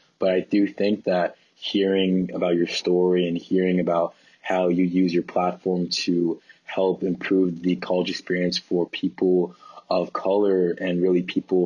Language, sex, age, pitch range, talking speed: English, male, 20-39, 90-95 Hz, 155 wpm